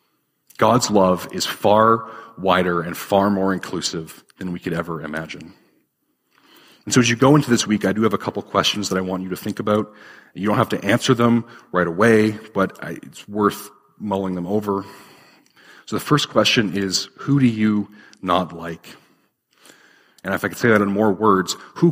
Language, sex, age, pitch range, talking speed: English, male, 40-59, 90-110 Hz, 190 wpm